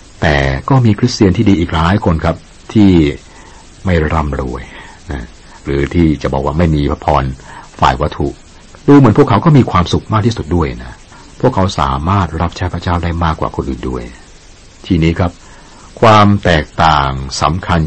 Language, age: Thai, 60-79